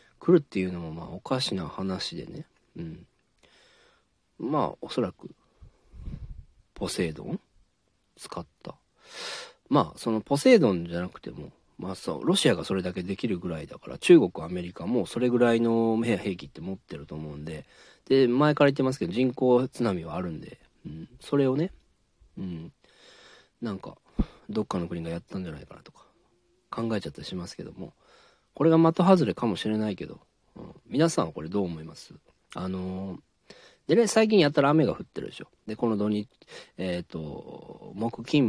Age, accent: 40-59, native